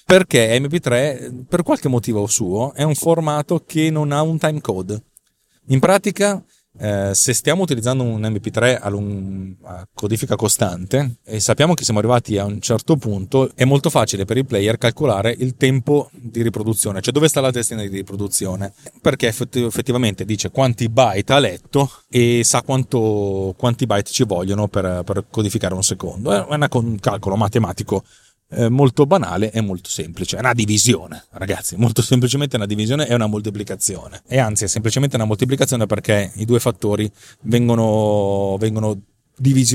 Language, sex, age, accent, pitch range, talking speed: Italian, male, 30-49, native, 105-130 Hz, 165 wpm